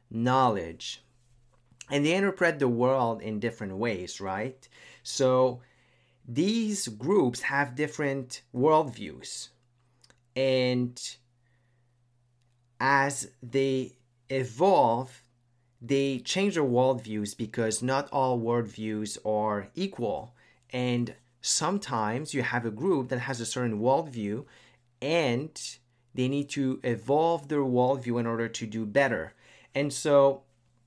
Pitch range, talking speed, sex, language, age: 115-140 Hz, 105 wpm, male, English, 30-49